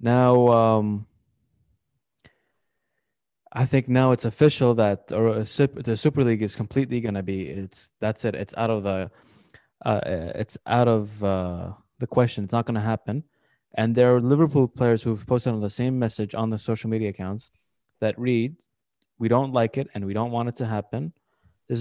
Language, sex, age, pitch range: Arabic, male, 20-39, 105-125 Hz